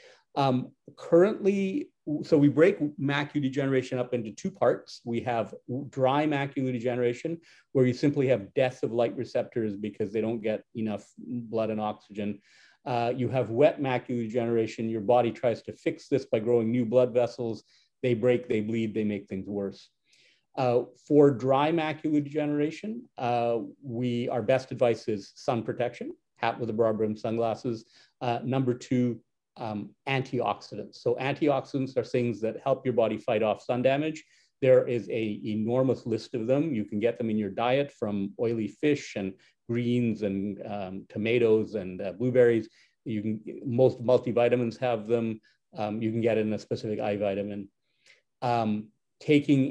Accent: American